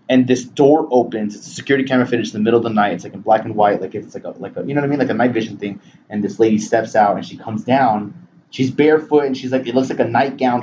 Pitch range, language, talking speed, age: 120-155 Hz, English, 315 wpm, 20-39